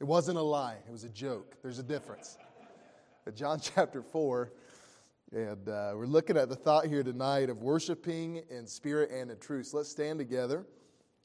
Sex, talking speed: male, 185 wpm